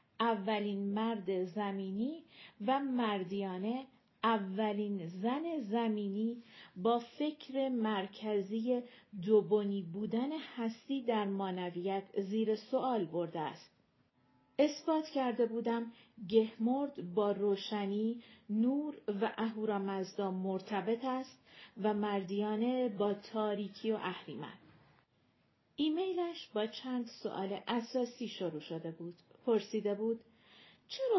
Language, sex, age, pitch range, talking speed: Persian, female, 40-59, 205-245 Hz, 95 wpm